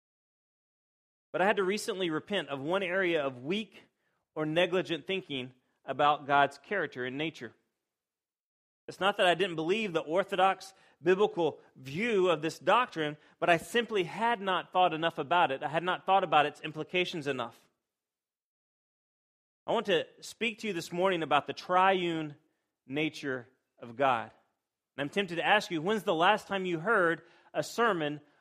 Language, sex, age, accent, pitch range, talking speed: English, male, 30-49, American, 155-195 Hz, 165 wpm